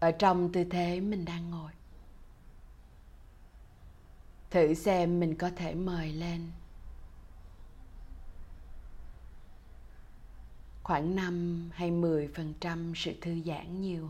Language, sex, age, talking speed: Vietnamese, female, 20-39, 95 wpm